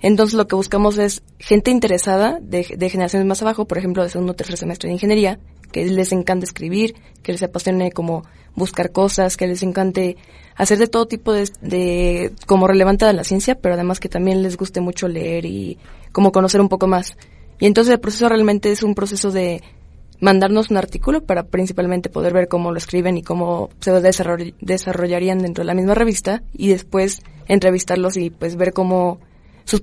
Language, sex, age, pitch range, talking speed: Spanish, female, 20-39, 175-195 Hz, 190 wpm